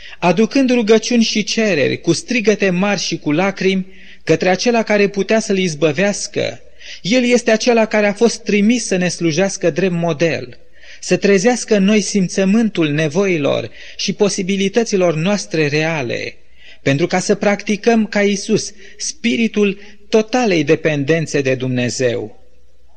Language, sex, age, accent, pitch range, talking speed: Romanian, male, 30-49, native, 160-215 Hz, 130 wpm